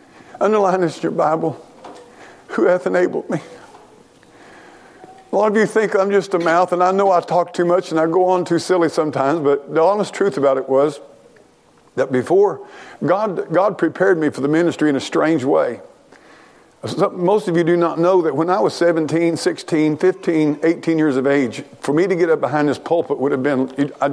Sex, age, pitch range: male, 50-69, 135-170 Hz